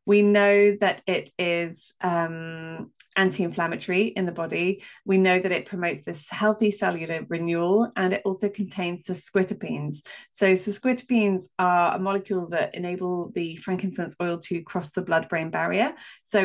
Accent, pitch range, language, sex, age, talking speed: British, 170-200 Hz, English, female, 20-39, 150 wpm